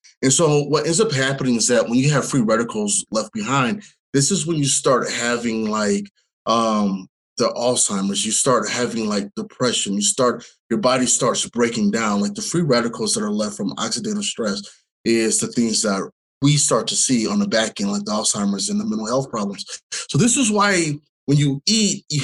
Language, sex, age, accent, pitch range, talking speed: English, male, 20-39, American, 125-180 Hz, 200 wpm